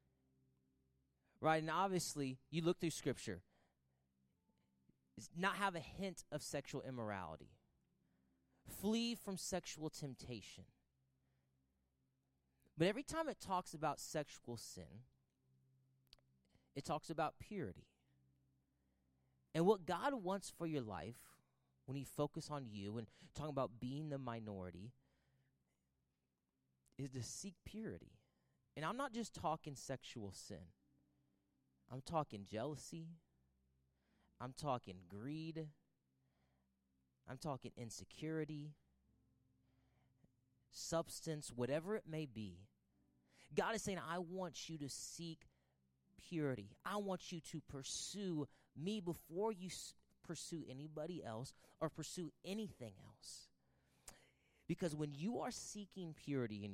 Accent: American